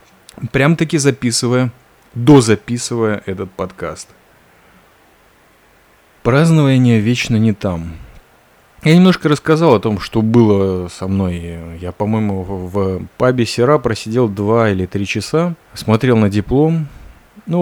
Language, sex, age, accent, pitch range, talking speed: Russian, male, 30-49, native, 100-130 Hz, 110 wpm